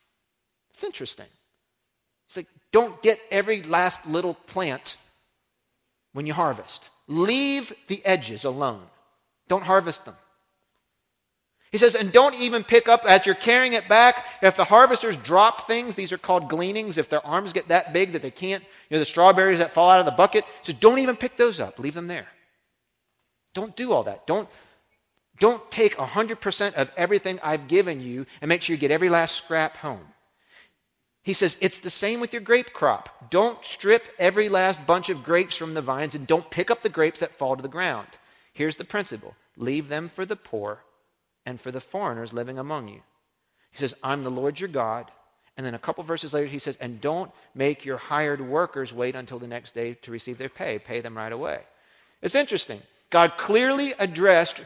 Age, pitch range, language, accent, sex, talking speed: 40-59, 145-205 Hz, English, American, male, 195 wpm